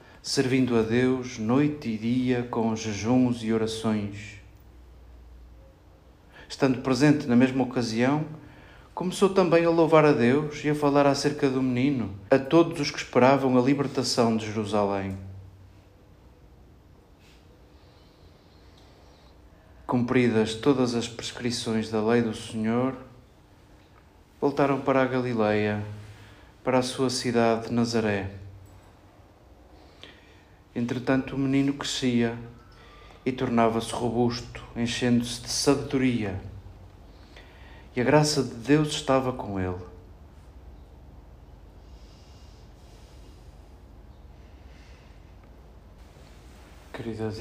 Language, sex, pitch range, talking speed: Portuguese, male, 95-125 Hz, 90 wpm